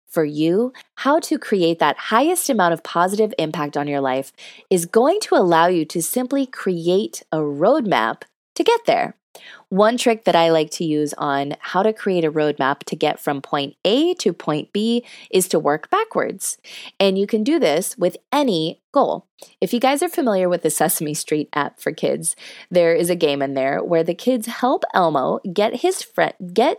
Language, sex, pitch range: English, female, 160-260 Hz